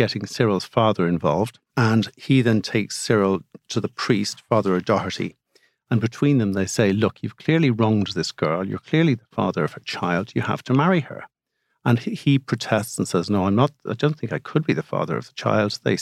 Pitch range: 105-135 Hz